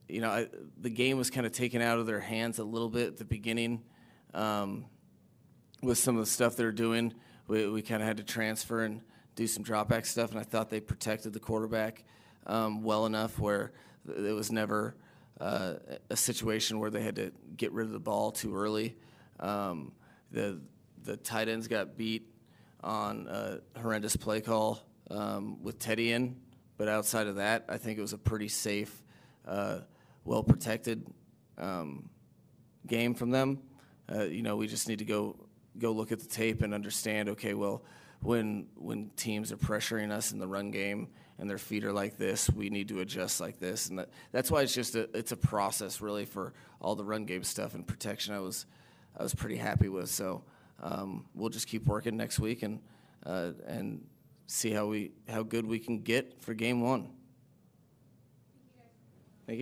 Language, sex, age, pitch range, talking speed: English, male, 30-49, 105-115 Hz, 190 wpm